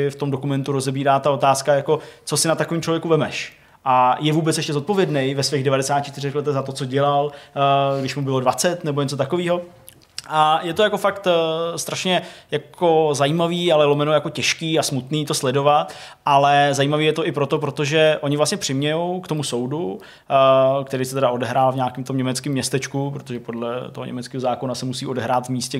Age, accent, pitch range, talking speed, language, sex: 20-39, native, 130-150 Hz, 190 wpm, Czech, male